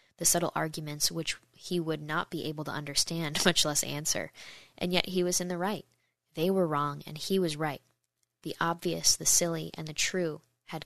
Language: English